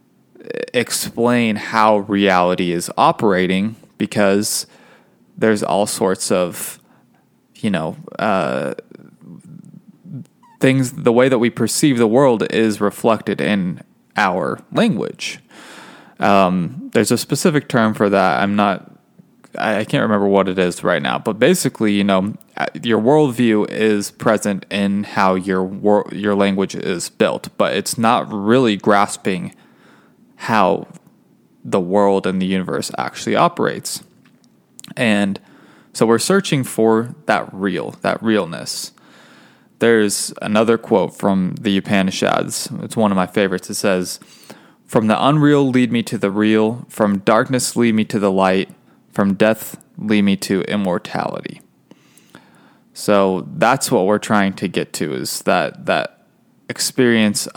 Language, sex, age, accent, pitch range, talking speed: English, male, 20-39, American, 100-115 Hz, 130 wpm